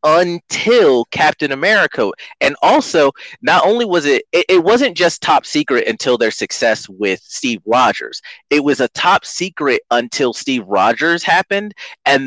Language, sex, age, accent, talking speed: English, male, 30-49, American, 150 wpm